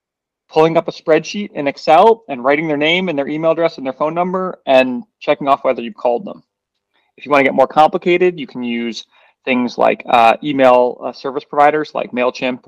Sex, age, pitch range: male, 30-49, 125-180 Hz